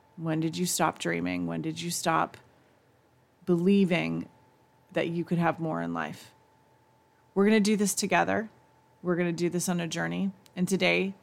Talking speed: 175 wpm